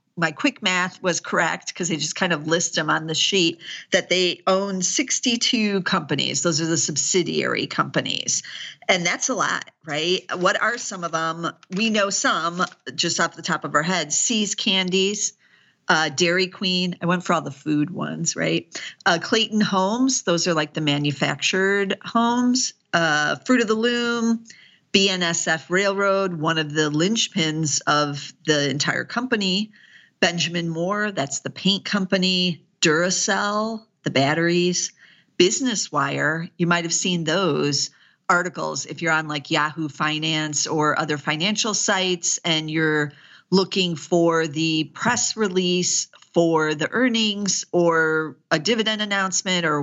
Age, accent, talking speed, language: 50-69, American, 150 wpm, English